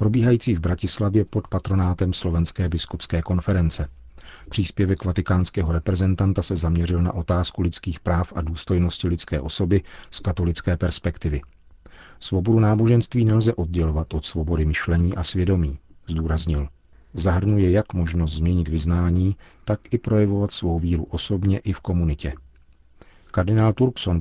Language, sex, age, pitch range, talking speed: Czech, male, 40-59, 85-95 Hz, 125 wpm